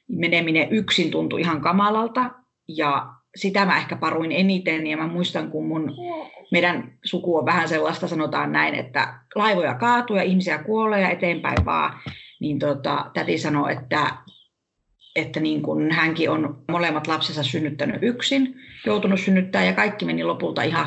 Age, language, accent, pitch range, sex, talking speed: 30-49, English, Finnish, 160-220 Hz, female, 150 wpm